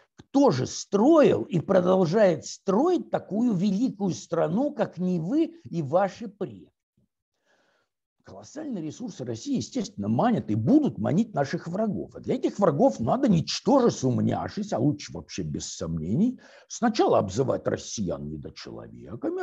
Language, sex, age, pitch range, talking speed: Russian, male, 60-79, 180-245 Hz, 125 wpm